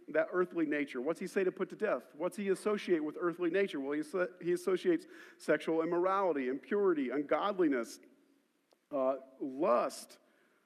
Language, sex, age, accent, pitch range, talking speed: English, male, 50-69, American, 190-290 Hz, 150 wpm